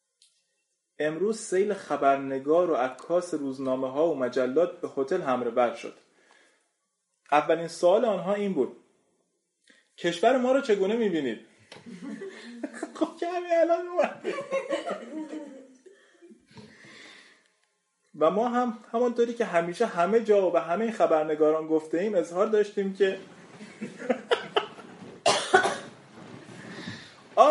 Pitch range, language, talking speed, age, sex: 170-245 Hz, Persian, 90 wpm, 30-49, male